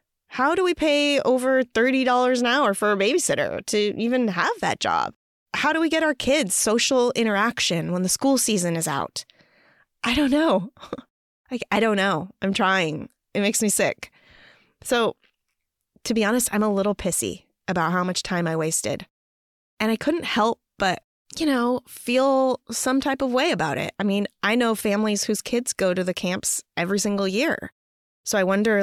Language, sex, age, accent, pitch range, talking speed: English, female, 20-39, American, 185-235 Hz, 180 wpm